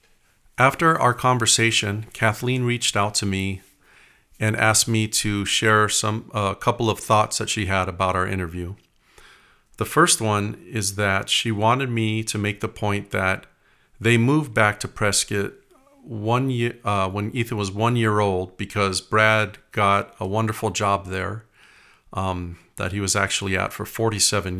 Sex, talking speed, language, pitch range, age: male, 165 wpm, English, 100-115 Hz, 40-59